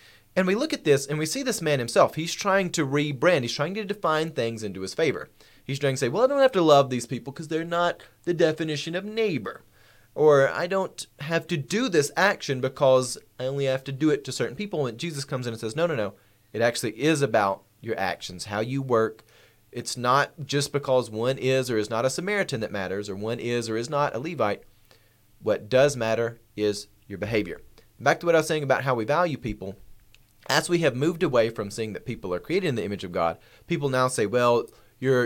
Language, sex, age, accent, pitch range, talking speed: English, male, 30-49, American, 110-145 Hz, 235 wpm